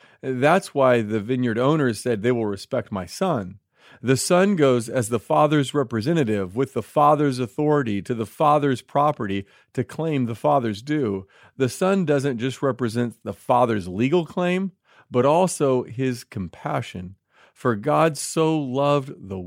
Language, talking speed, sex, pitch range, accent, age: English, 150 wpm, male, 110-150 Hz, American, 40-59